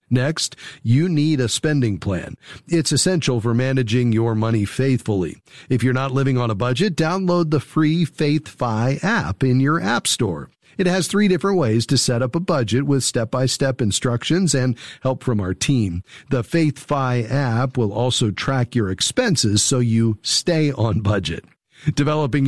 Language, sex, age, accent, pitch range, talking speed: English, male, 40-59, American, 120-155 Hz, 165 wpm